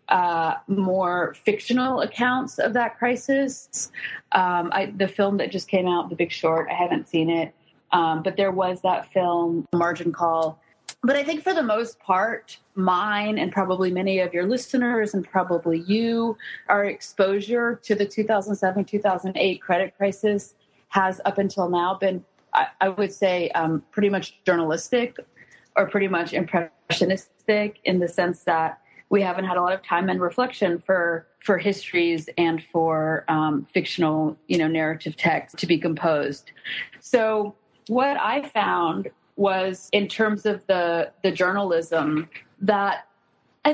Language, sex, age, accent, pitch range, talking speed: English, female, 30-49, American, 170-210 Hz, 150 wpm